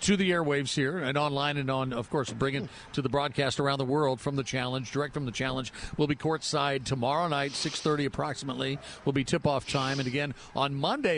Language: English